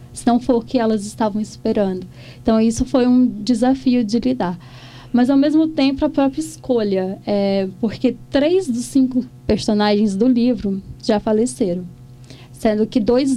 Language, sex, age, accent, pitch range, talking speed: Portuguese, female, 10-29, Brazilian, 200-260 Hz, 155 wpm